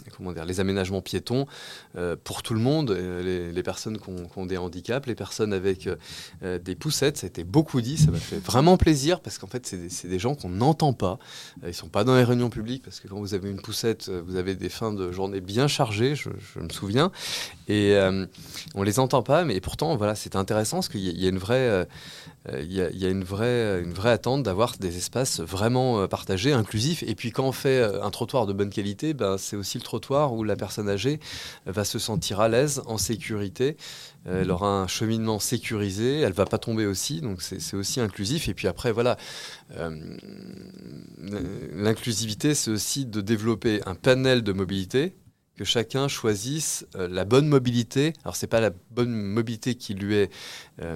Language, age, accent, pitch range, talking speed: French, 20-39, French, 95-125 Hz, 205 wpm